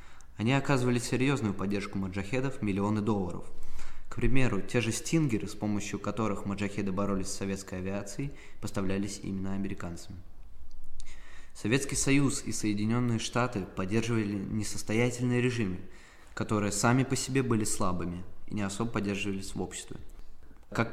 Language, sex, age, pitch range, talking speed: Russian, male, 20-39, 95-120 Hz, 125 wpm